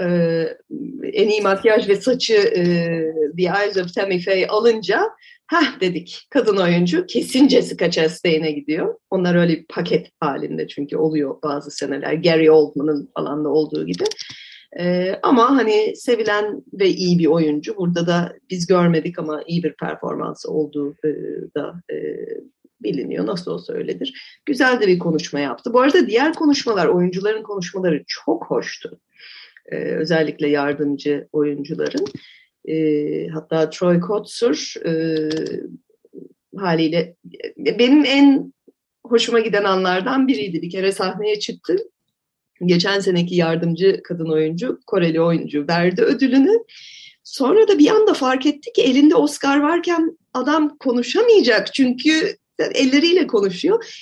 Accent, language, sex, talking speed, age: native, Turkish, female, 125 wpm, 30-49